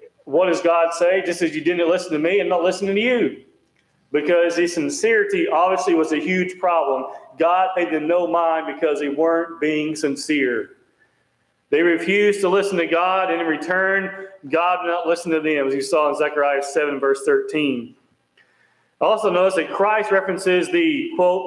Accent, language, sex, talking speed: American, English, male, 180 wpm